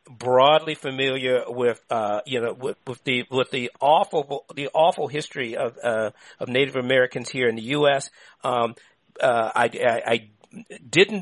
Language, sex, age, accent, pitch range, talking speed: English, male, 50-69, American, 130-180 Hz, 160 wpm